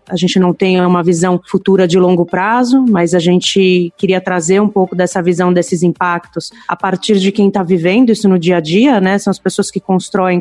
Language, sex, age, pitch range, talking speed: Portuguese, female, 20-39, 180-205 Hz, 220 wpm